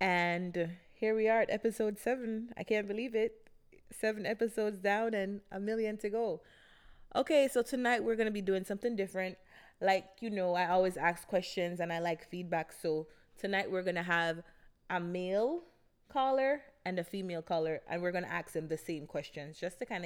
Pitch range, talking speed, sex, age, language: 160-205 Hz, 195 wpm, female, 20-39, English